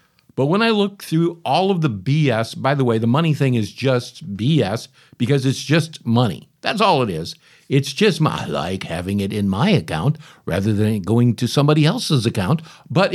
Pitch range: 120-165 Hz